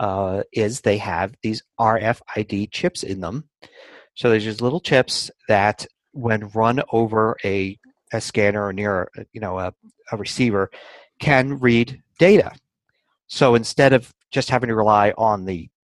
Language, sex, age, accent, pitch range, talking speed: English, male, 40-59, American, 100-130 Hz, 155 wpm